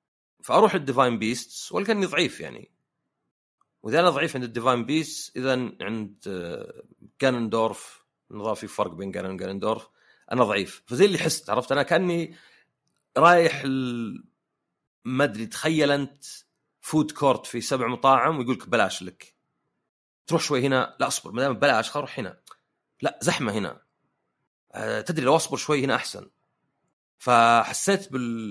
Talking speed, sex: 130 wpm, male